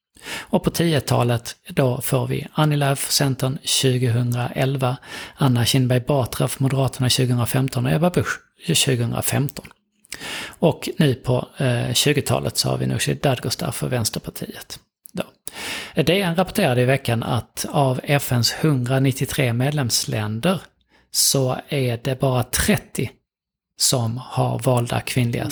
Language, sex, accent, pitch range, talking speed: Swedish, male, native, 125-145 Hz, 125 wpm